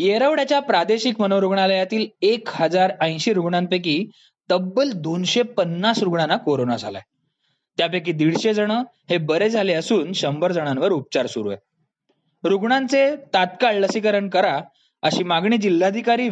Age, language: 20-39, Marathi